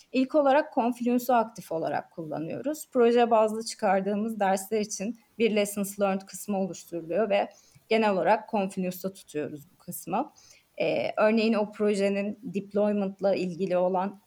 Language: Turkish